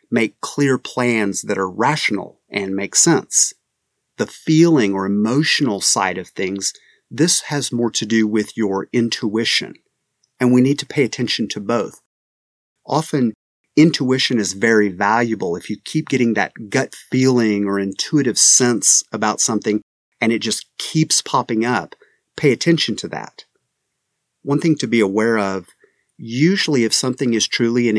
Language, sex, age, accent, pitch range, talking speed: English, male, 30-49, American, 105-135 Hz, 150 wpm